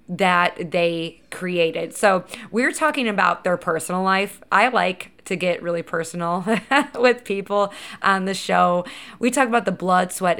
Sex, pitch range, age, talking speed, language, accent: female, 170-215 Hz, 20-39, 155 wpm, English, American